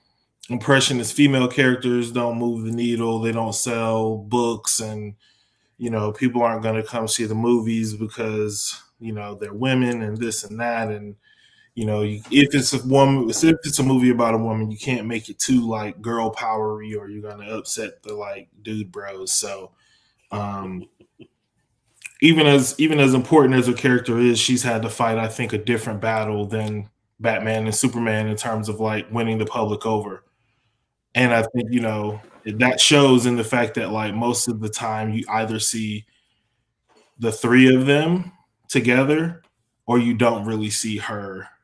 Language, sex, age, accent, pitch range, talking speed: English, male, 20-39, American, 110-125 Hz, 180 wpm